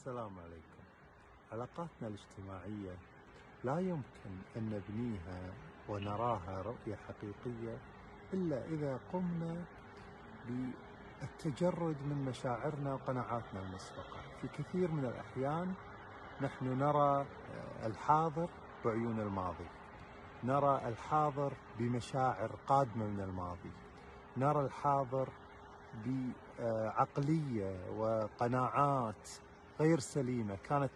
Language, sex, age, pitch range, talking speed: Arabic, male, 50-69, 105-140 Hz, 80 wpm